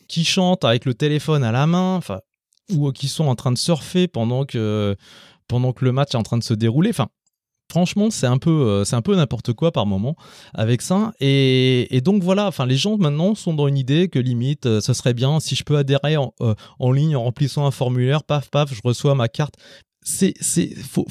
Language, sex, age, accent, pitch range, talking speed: French, male, 20-39, French, 115-170 Hz, 235 wpm